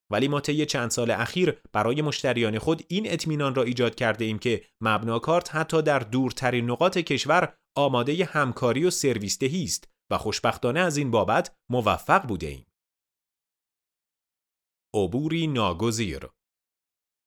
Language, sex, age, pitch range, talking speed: Persian, male, 30-49, 105-130 Hz, 125 wpm